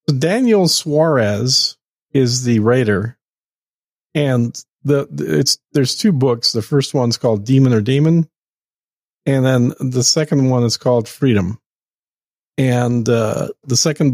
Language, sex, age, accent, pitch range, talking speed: English, male, 40-59, American, 115-140 Hz, 125 wpm